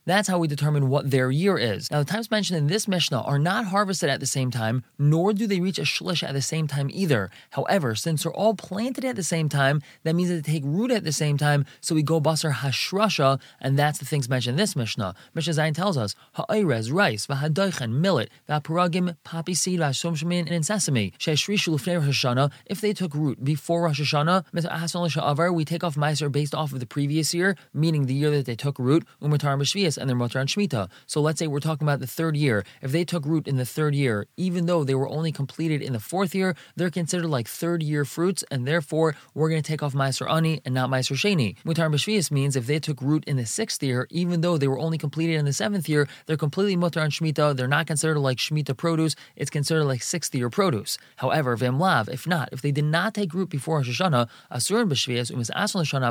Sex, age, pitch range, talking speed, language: male, 20-39, 135-170 Hz, 220 wpm, English